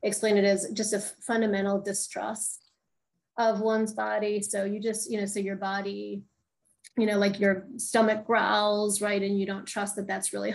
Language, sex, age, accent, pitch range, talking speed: English, female, 30-49, American, 195-215 Hz, 180 wpm